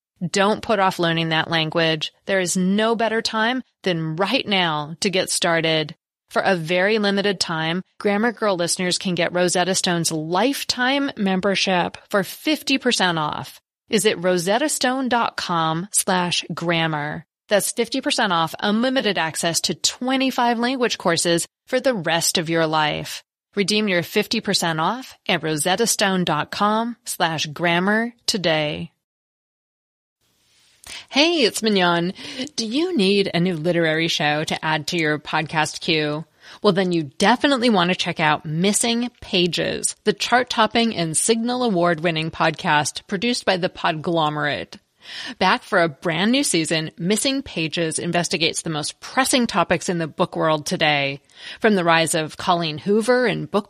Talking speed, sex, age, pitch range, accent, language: 140 wpm, female, 30-49, 165-220 Hz, American, English